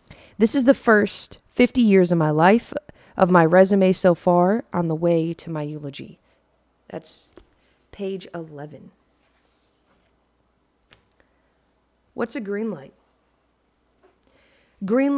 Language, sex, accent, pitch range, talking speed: English, female, American, 180-225 Hz, 110 wpm